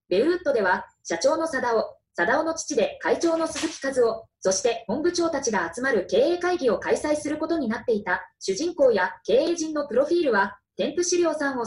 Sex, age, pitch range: female, 20-39, 245-335 Hz